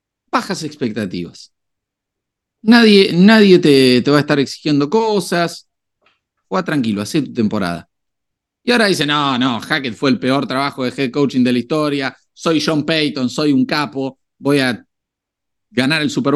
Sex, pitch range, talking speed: male, 115-155 Hz, 160 wpm